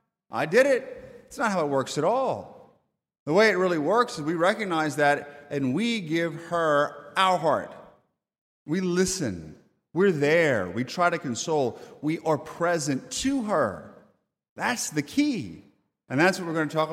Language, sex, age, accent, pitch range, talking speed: English, male, 30-49, American, 135-180 Hz, 170 wpm